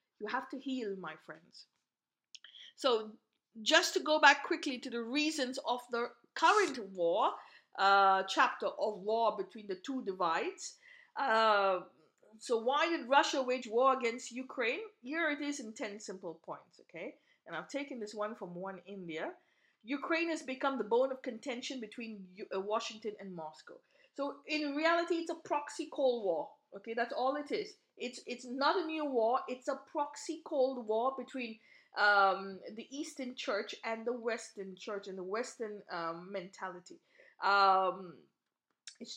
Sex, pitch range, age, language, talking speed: female, 205-290 Hz, 50-69, English, 160 wpm